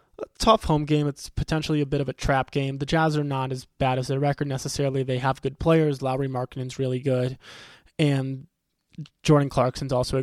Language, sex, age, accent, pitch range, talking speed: English, male, 20-39, American, 135-160 Hz, 200 wpm